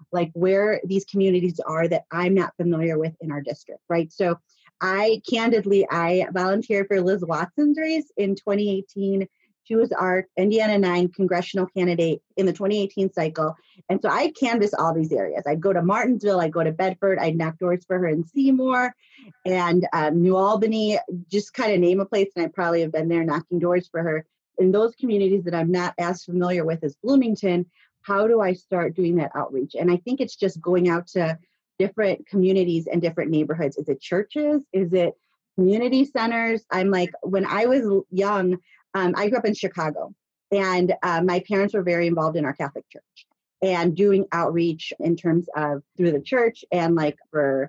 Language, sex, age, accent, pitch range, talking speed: English, female, 30-49, American, 170-200 Hz, 195 wpm